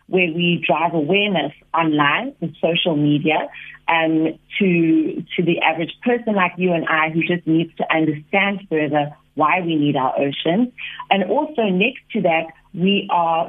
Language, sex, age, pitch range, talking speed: English, female, 30-49, 165-195 Hz, 165 wpm